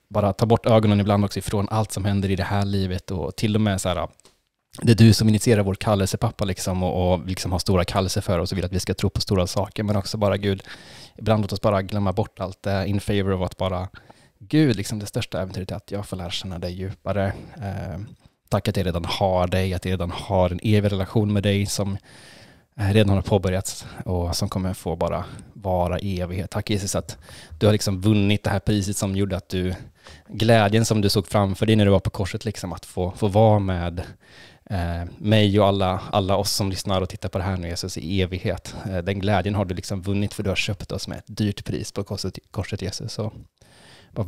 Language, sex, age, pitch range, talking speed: Swedish, male, 20-39, 95-105 Hz, 235 wpm